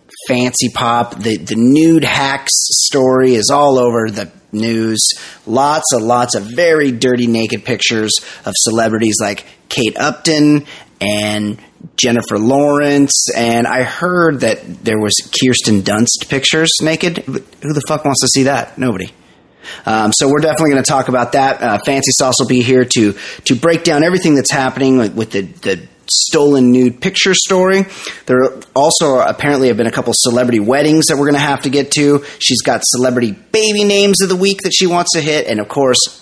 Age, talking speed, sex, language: 30-49, 180 wpm, male, English